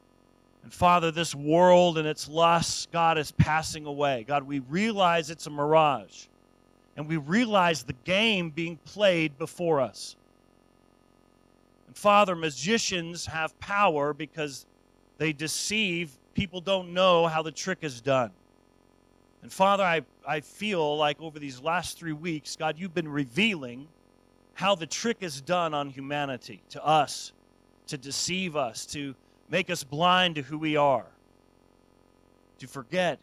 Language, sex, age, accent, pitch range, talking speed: English, male, 40-59, American, 130-170 Hz, 145 wpm